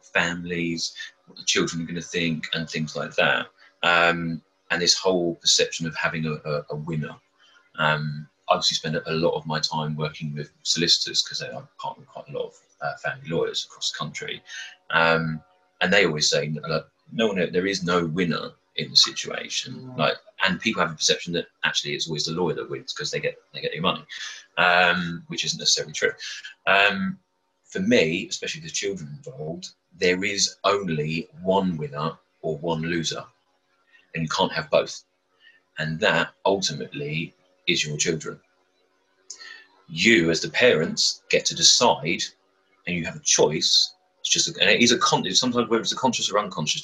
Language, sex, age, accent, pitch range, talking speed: English, male, 30-49, British, 80-95 Hz, 185 wpm